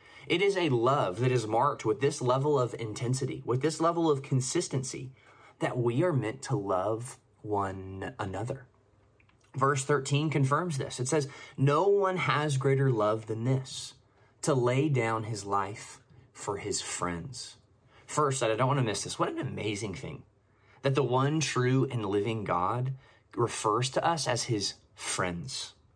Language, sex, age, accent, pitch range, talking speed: English, male, 20-39, American, 110-140 Hz, 160 wpm